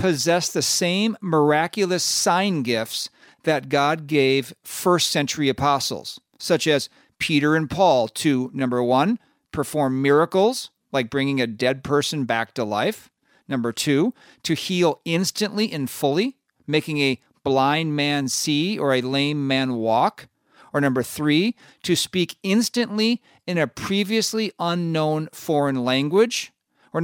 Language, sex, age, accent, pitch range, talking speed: English, male, 50-69, American, 140-185 Hz, 135 wpm